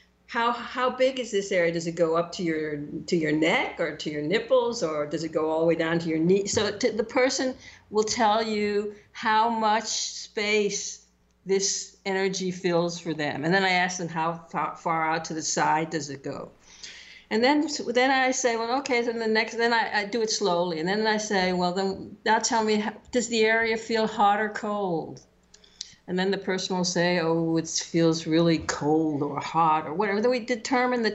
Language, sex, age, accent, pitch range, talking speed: English, female, 60-79, American, 170-215 Hz, 220 wpm